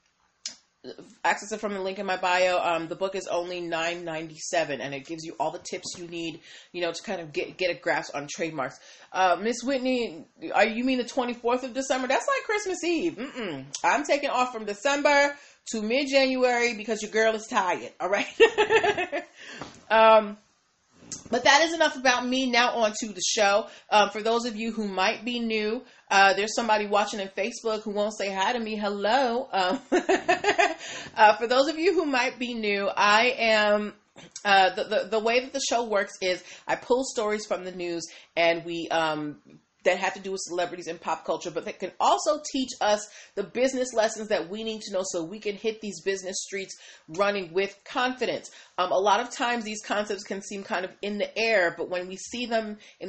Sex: female